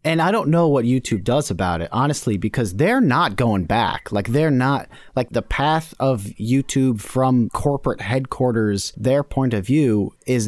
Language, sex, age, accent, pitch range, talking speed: English, male, 30-49, American, 105-135 Hz, 180 wpm